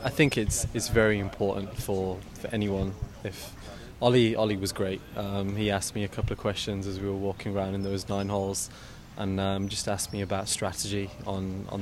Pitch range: 100-110 Hz